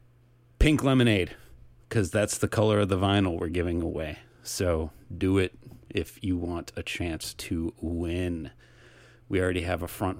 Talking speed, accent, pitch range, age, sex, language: 160 wpm, American, 90-110 Hz, 30-49, male, English